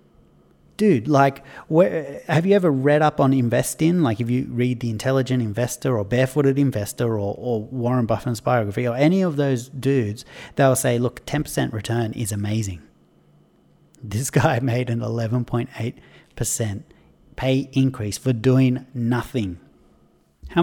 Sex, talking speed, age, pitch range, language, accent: male, 150 wpm, 30-49, 115-150 Hz, English, Australian